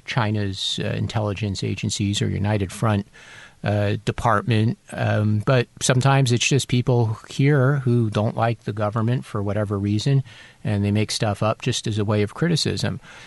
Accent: American